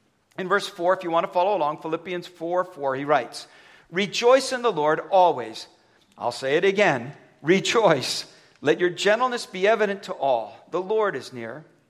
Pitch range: 155-210 Hz